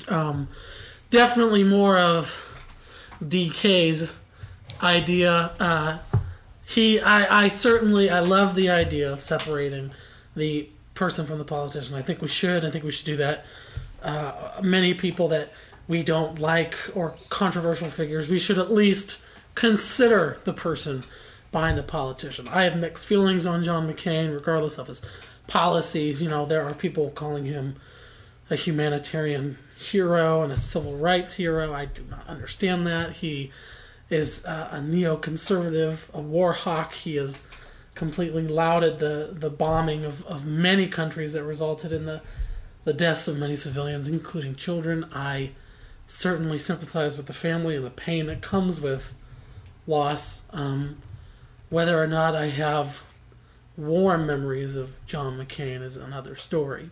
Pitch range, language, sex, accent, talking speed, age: 140-170 Hz, English, male, American, 150 wpm, 20-39